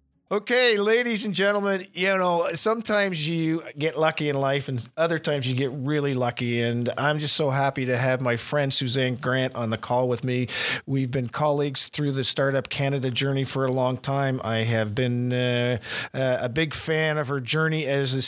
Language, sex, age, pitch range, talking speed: English, male, 50-69, 135-180 Hz, 195 wpm